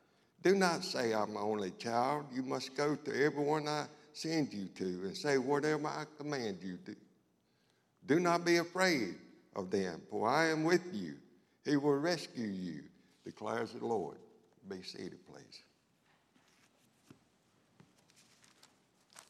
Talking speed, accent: 135 wpm, American